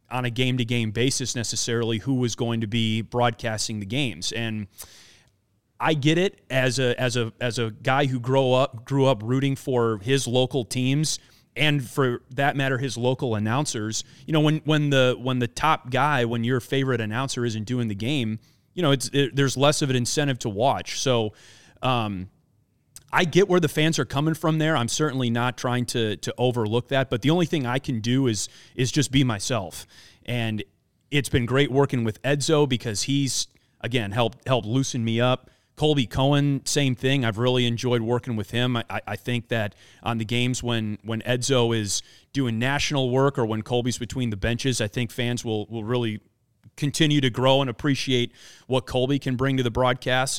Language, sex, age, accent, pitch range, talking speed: English, male, 30-49, American, 115-135 Hz, 195 wpm